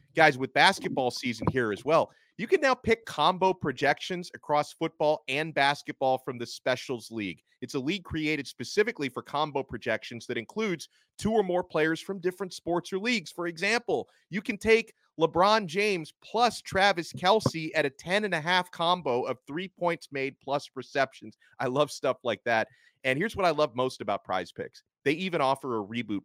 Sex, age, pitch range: male, 30-49, 125-175 Hz